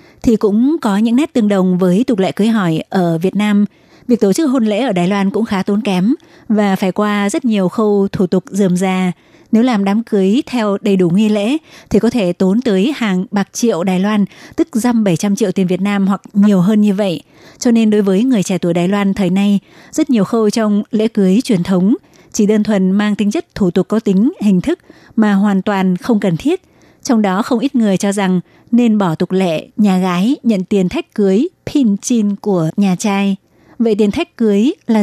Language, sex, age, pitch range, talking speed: Vietnamese, female, 20-39, 190-225 Hz, 225 wpm